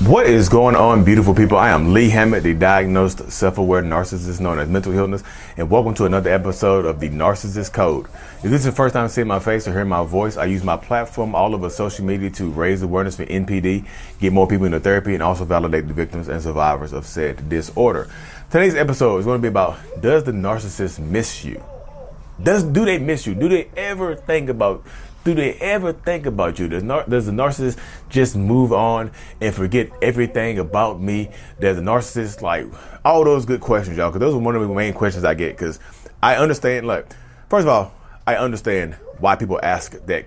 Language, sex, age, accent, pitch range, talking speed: English, male, 30-49, American, 90-120 Hz, 210 wpm